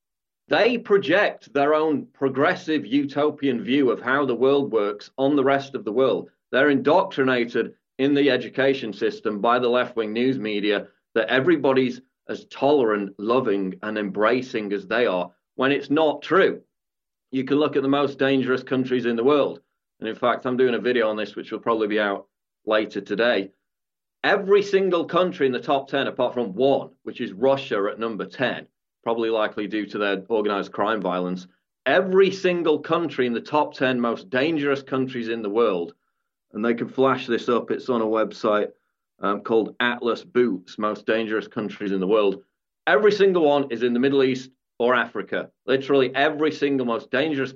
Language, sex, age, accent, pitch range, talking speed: English, male, 40-59, British, 110-140 Hz, 180 wpm